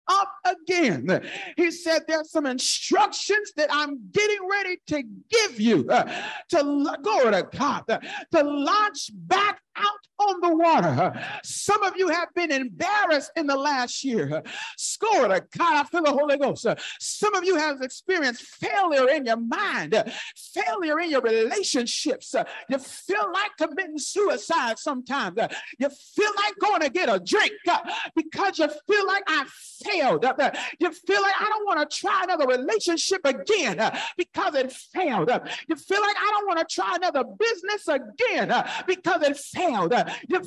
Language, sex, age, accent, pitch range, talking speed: English, male, 50-69, American, 300-405 Hz, 160 wpm